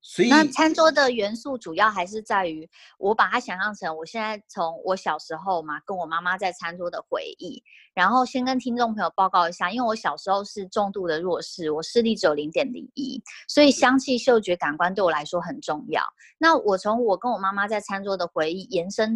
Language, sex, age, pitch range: Chinese, female, 20-39, 170-240 Hz